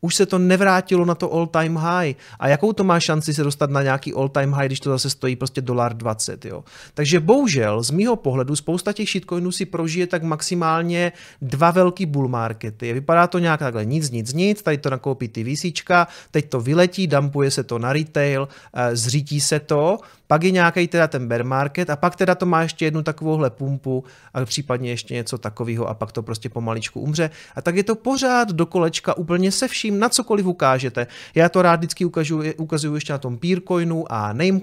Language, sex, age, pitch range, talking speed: Czech, male, 30-49, 130-175 Hz, 210 wpm